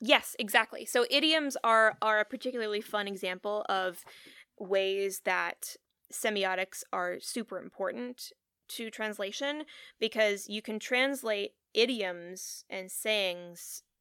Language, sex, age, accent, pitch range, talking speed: English, female, 20-39, American, 175-220 Hz, 110 wpm